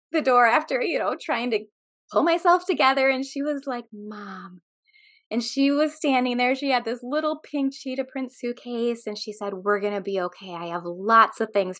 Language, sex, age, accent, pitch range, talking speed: English, female, 20-39, American, 200-280 Hz, 205 wpm